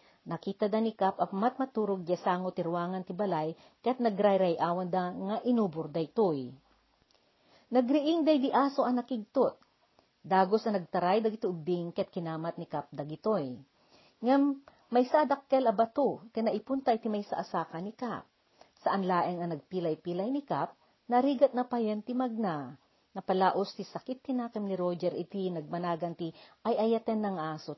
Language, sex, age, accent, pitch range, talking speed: Filipino, female, 40-59, native, 170-235 Hz, 145 wpm